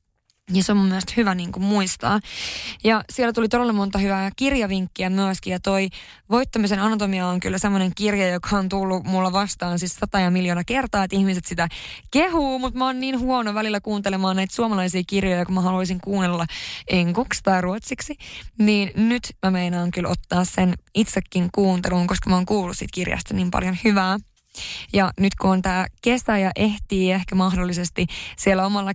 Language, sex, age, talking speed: Finnish, female, 20-39, 180 wpm